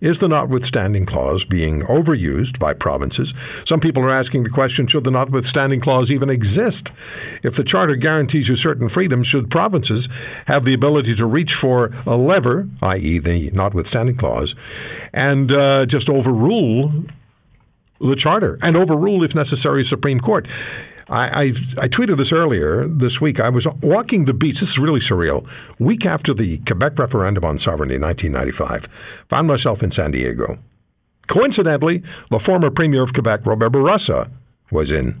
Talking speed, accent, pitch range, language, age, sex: 160 wpm, American, 110-150 Hz, English, 60-79, male